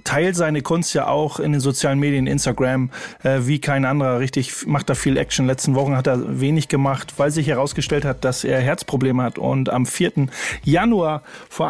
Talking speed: 195 wpm